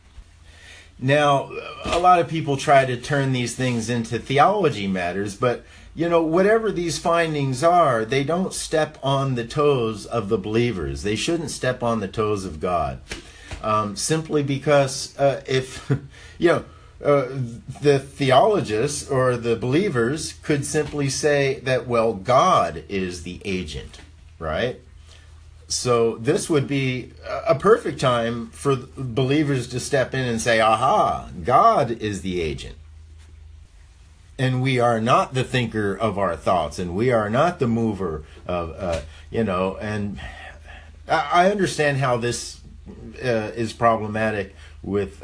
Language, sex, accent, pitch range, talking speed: English, male, American, 80-135 Hz, 140 wpm